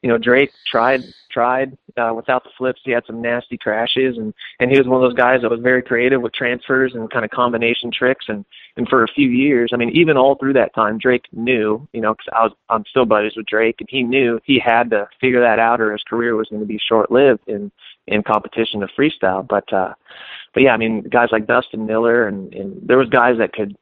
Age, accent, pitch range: 30-49, American, 110-125 Hz